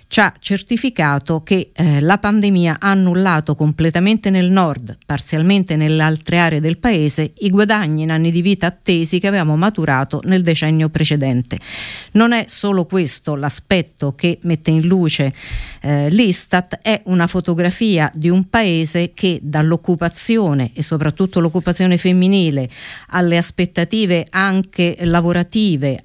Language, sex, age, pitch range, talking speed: Italian, female, 50-69, 155-190 Hz, 135 wpm